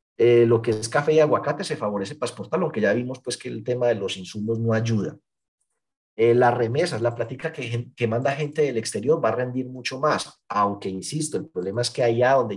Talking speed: 225 wpm